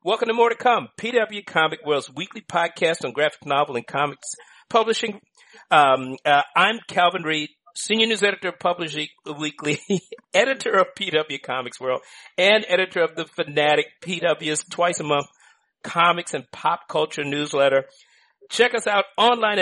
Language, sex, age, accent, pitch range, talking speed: English, male, 50-69, American, 150-200 Hz, 155 wpm